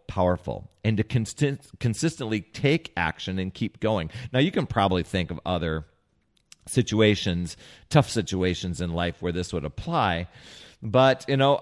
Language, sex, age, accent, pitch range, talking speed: English, male, 40-59, American, 100-135 Hz, 150 wpm